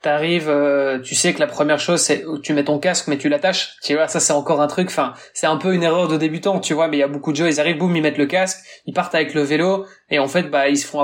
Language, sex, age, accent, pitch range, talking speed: French, male, 20-39, French, 145-170 Hz, 330 wpm